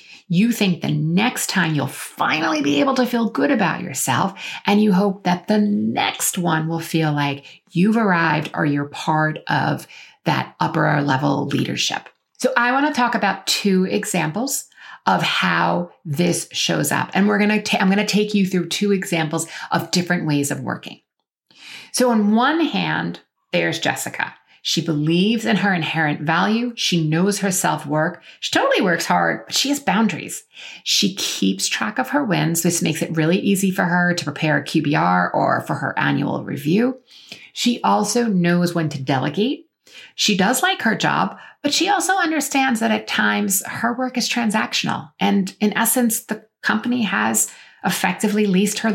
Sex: female